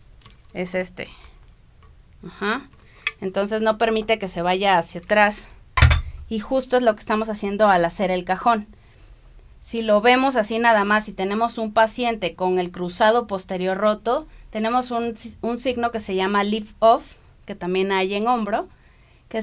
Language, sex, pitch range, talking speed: Spanish, female, 195-235 Hz, 160 wpm